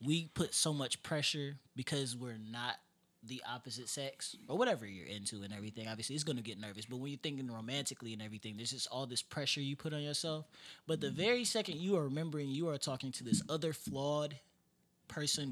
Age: 20-39